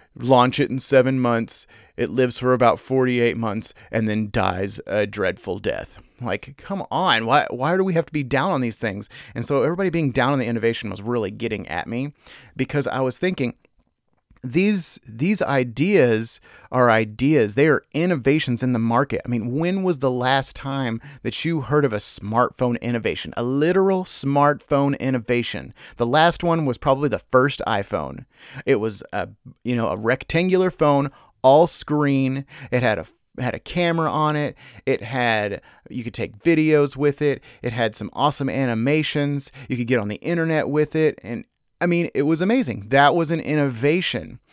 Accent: American